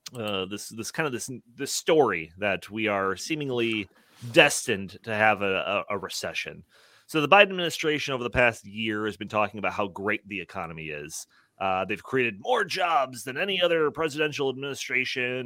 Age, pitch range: 30-49, 105-165 Hz